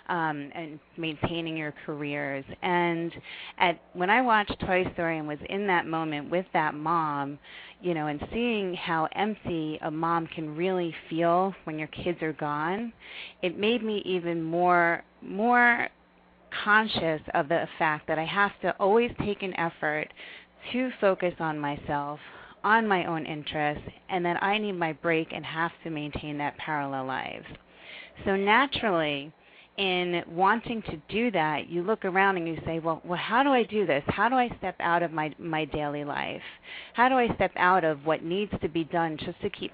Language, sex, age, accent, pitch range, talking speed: English, female, 30-49, American, 155-195 Hz, 180 wpm